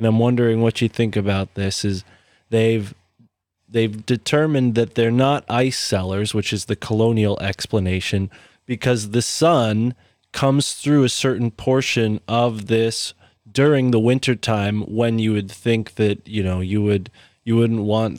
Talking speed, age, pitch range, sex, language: 160 wpm, 20-39, 100-120 Hz, male, English